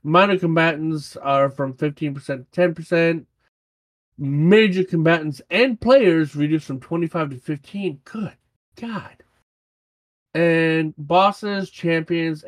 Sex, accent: male, American